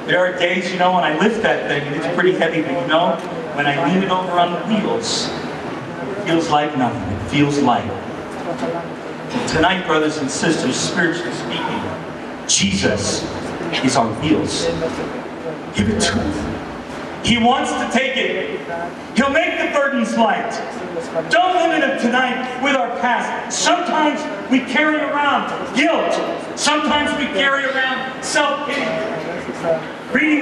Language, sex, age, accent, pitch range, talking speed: English, male, 40-59, American, 245-300 Hz, 150 wpm